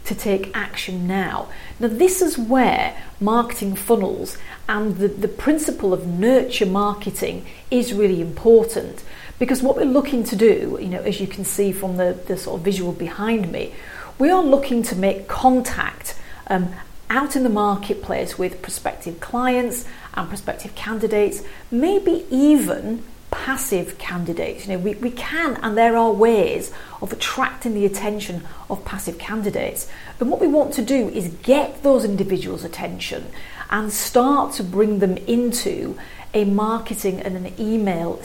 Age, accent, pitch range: 40-59, British, 190-245 Hz